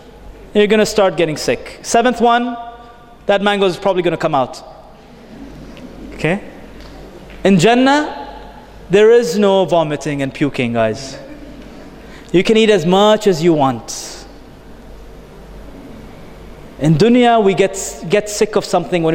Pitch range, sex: 155-225 Hz, male